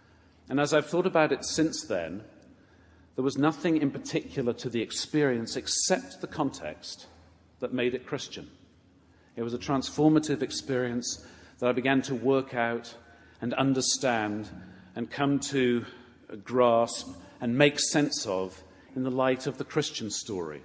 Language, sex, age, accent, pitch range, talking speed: English, male, 40-59, British, 100-135 Hz, 150 wpm